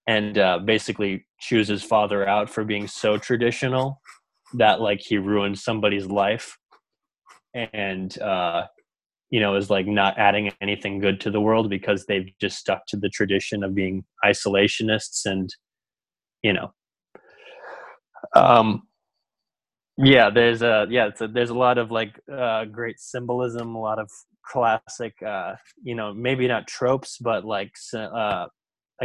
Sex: male